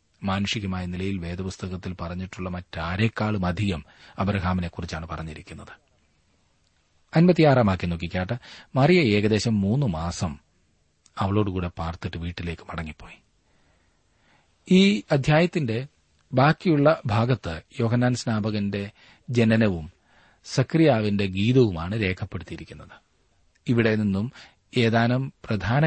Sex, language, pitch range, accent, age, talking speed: male, Malayalam, 90-120 Hz, native, 40-59, 60 wpm